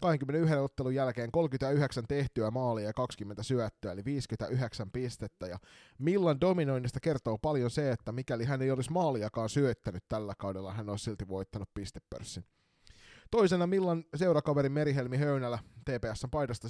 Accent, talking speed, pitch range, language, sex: native, 135 wpm, 110-140 Hz, Finnish, male